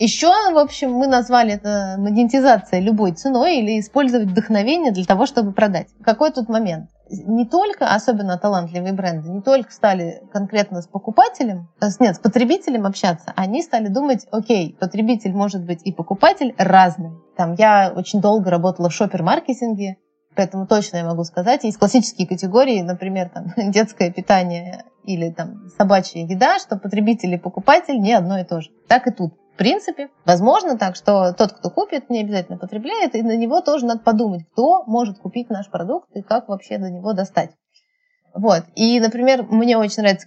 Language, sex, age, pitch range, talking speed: Russian, female, 20-39, 185-235 Hz, 165 wpm